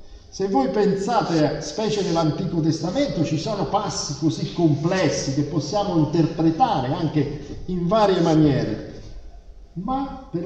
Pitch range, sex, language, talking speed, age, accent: 135-195 Hz, male, Italian, 120 wpm, 50-69, native